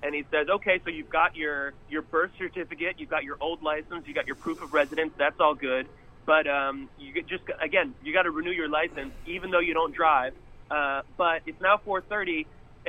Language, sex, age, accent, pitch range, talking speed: English, male, 30-49, American, 130-175 Hz, 215 wpm